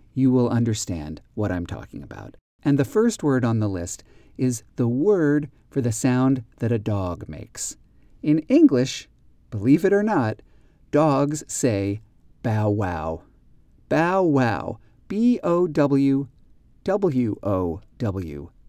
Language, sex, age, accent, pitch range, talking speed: English, male, 40-59, American, 105-140 Hz, 110 wpm